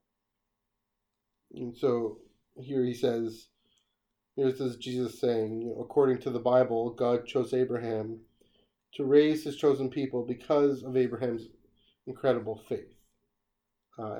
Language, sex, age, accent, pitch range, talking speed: English, male, 30-49, American, 105-130 Hz, 125 wpm